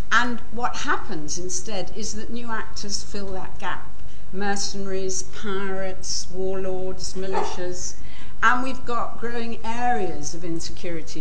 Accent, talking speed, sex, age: British, 120 wpm, female, 60-79